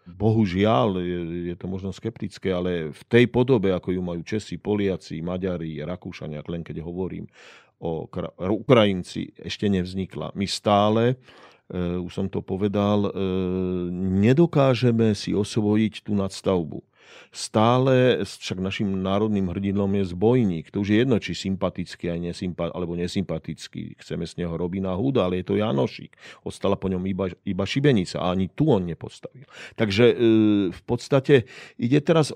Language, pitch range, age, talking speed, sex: Slovak, 90-120 Hz, 40-59, 140 wpm, male